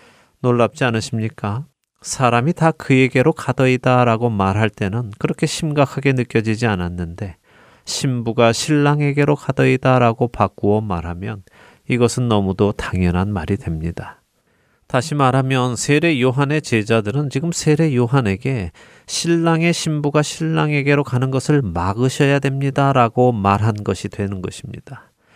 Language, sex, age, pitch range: Korean, male, 30-49, 110-140 Hz